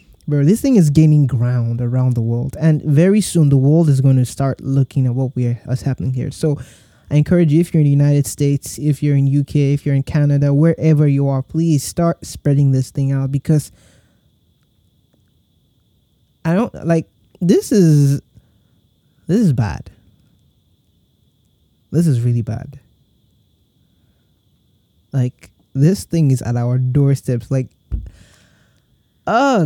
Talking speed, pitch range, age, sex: 150 wpm, 130-155 Hz, 20-39, male